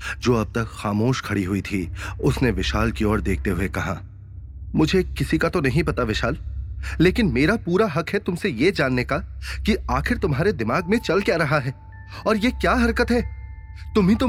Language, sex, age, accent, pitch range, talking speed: Hindi, male, 30-49, native, 90-145 Hz, 195 wpm